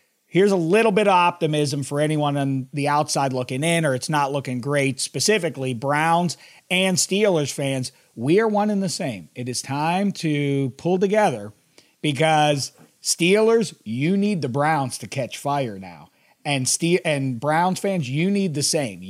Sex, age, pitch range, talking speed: male, 40-59, 130-175 Hz, 170 wpm